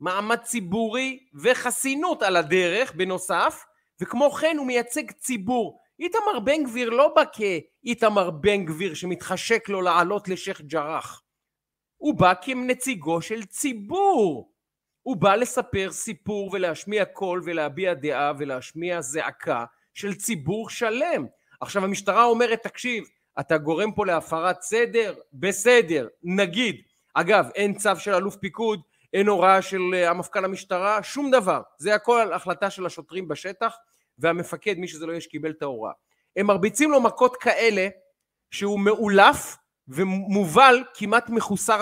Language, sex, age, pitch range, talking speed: Hebrew, male, 30-49, 180-235 Hz, 130 wpm